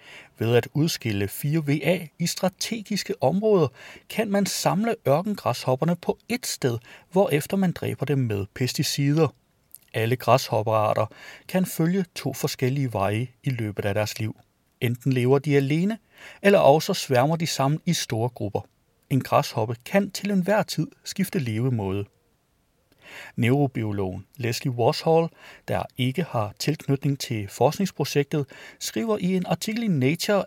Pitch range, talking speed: 120-180 Hz, 135 wpm